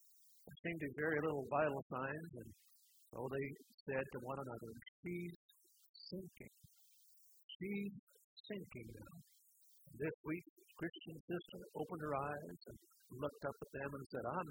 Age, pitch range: 50-69, 145-210 Hz